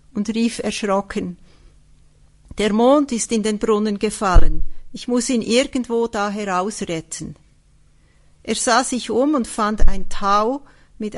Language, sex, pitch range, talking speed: English, female, 195-240 Hz, 135 wpm